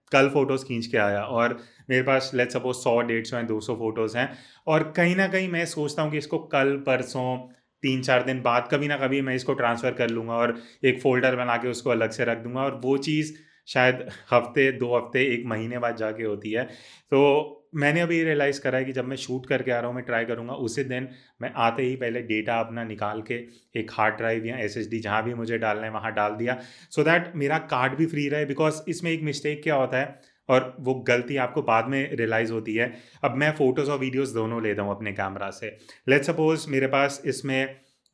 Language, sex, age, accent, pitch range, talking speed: Hindi, male, 30-49, native, 115-140 Hz, 225 wpm